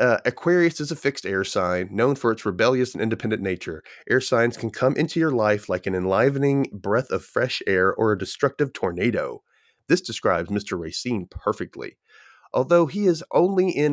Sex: male